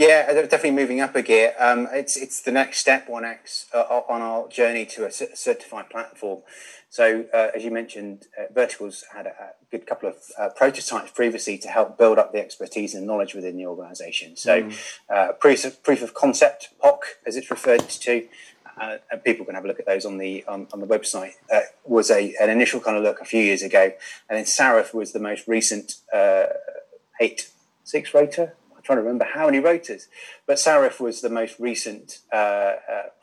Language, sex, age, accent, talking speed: English, male, 30-49, British, 200 wpm